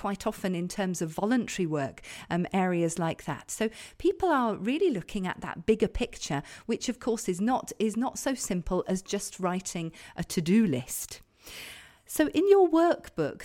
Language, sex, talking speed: English, female, 180 wpm